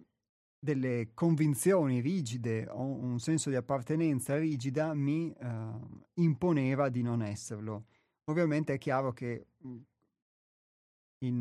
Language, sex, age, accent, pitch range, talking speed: Italian, male, 30-49, native, 115-140 Hz, 105 wpm